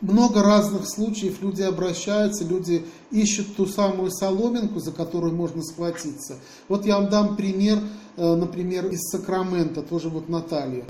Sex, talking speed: male, 140 wpm